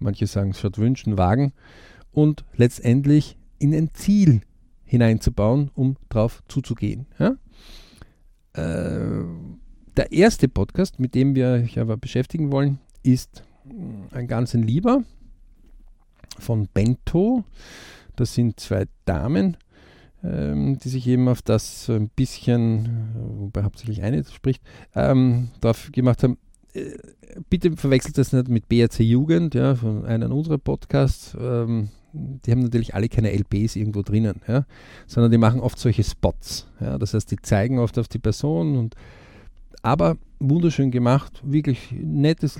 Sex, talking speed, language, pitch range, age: male, 135 wpm, German, 105-130 Hz, 50-69